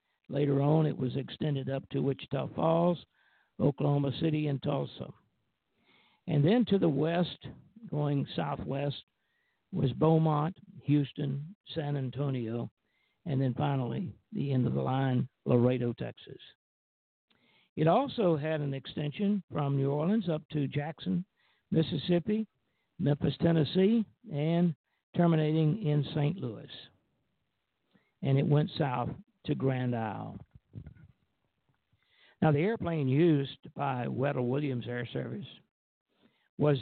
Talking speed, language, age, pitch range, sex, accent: 115 wpm, English, 60-79, 135-165 Hz, male, American